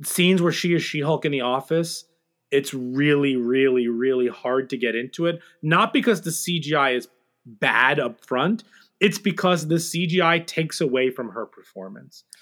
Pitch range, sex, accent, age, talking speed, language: 135-185 Hz, male, American, 30-49, 170 wpm, English